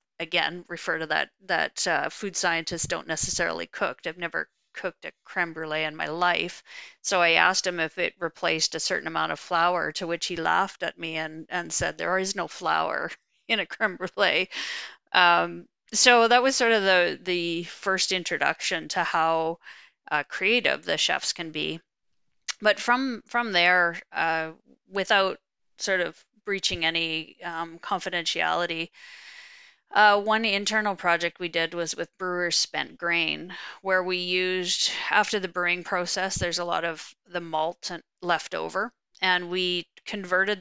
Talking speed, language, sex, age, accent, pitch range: 160 wpm, English, female, 40-59, American, 165-190 Hz